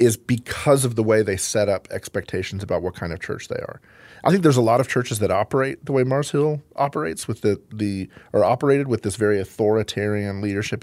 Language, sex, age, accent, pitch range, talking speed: English, male, 40-59, American, 105-125 Hz, 215 wpm